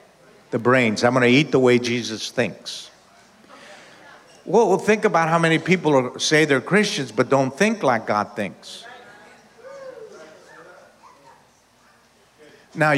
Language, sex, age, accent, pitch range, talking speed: English, male, 50-69, American, 130-185 Hz, 120 wpm